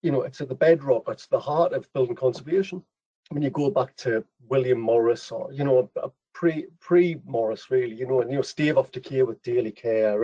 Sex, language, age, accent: male, English, 40-59, British